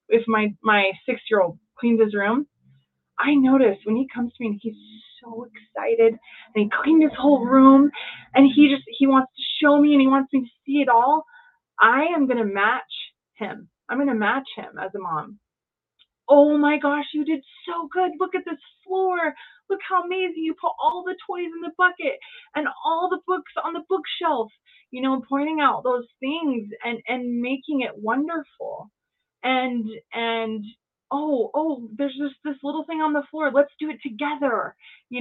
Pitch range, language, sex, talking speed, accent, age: 230-305 Hz, English, female, 190 wpm, American, 20-39